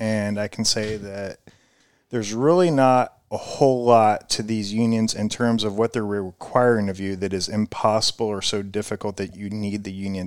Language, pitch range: English, 100-115 Hz